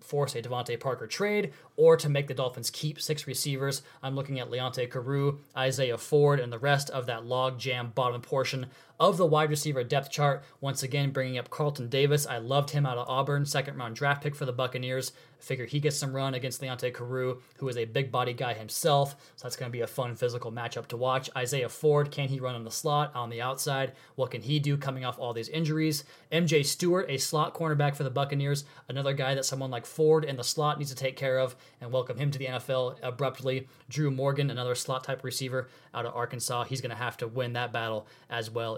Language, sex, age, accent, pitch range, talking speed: English, male, 20-39, American, 125-145 Hz, 230 wpm